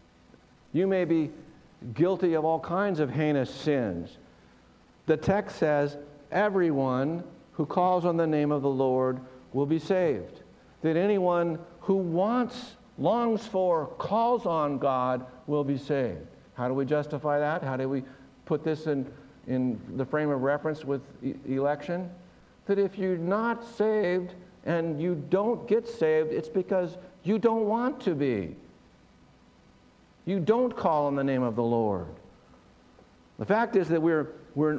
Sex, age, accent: male, 60-79, American